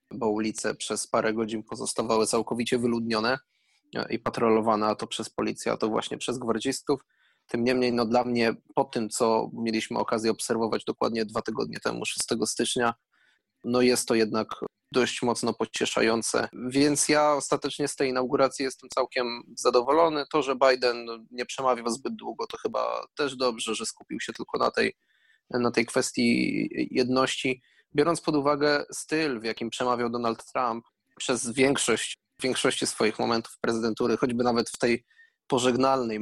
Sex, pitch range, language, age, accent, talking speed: male, 110-130 Hz, Polish, 20-39, native, 150 wpm